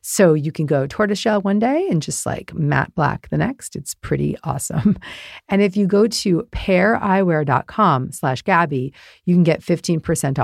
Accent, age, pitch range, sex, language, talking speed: American, 40-59, 145-195 Hz, female, English, 165 wpm